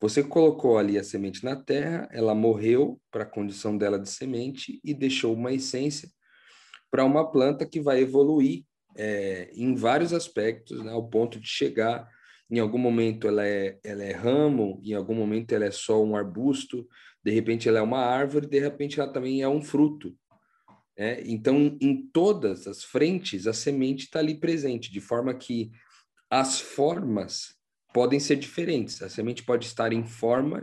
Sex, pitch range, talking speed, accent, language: male, 110-140 Hz, 170 wpm, Brazilian, Portuguese